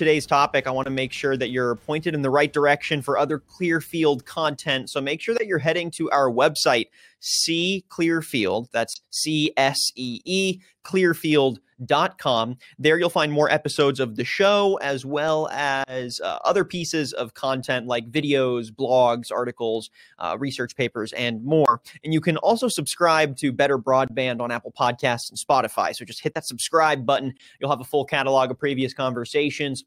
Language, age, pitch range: English, 30-49, 130-160 Hz